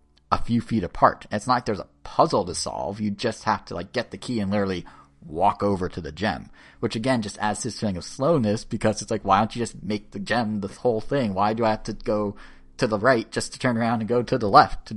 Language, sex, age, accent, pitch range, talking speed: English, male, 30-49, American, 95-115 Hz, 270 wpm